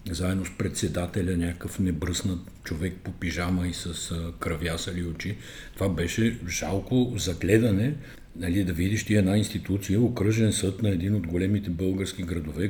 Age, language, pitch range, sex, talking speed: 50-69, Bulgarian, 90-110 Hz, male, 145 wpm